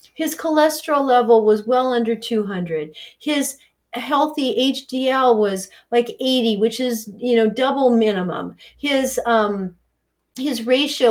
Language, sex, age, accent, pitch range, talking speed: English, female, 40-59, American, 230-285 Hz, 125 wpm